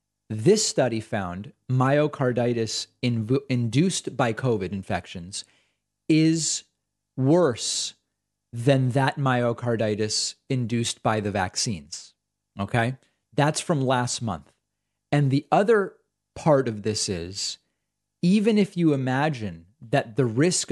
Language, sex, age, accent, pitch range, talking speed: English, male, 30-49, American, 110-140 Hz, 105 wpm